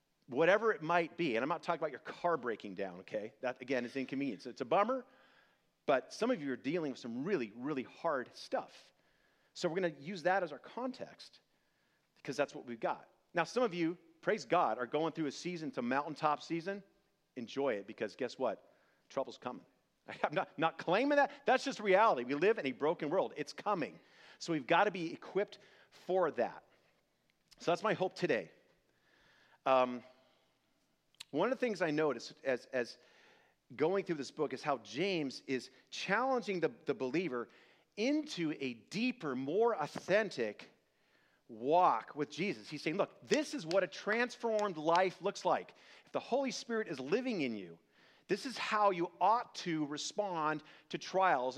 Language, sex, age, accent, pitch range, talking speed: English, male, 40-59, American, 145-210 Hz, 180 wpm